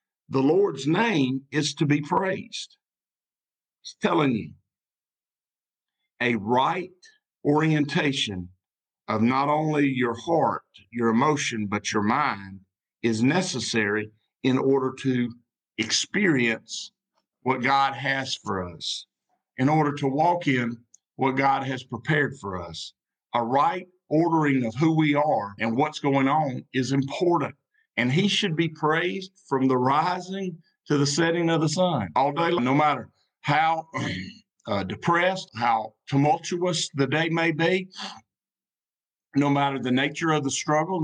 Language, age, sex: English, 50-69, male